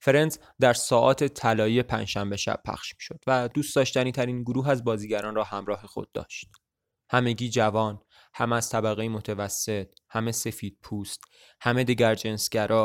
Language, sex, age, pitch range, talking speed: English, male, 20-39, 105-125 Hz, 145 wpm